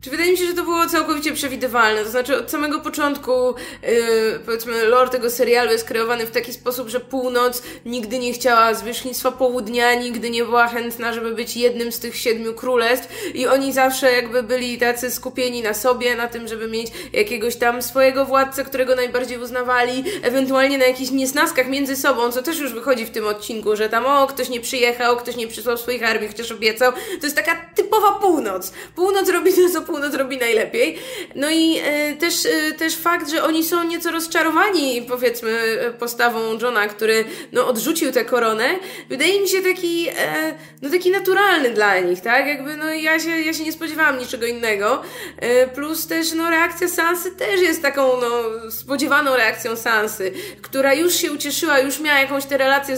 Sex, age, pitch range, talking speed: female, 20-39, 240-315 Hz, 185 wpm